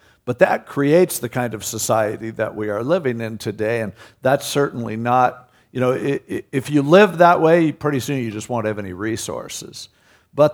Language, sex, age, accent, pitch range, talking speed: English, male, 50-69, American, 105-130 Hz, 190 wpm